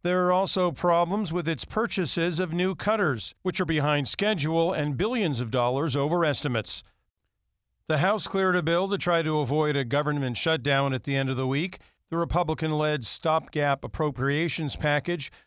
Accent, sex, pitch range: American, male, 130-165 Hz